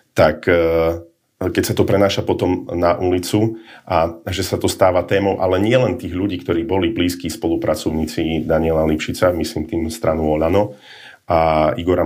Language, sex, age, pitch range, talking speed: Slovak, male, 40-59, 80-100 Hz, 150 wpm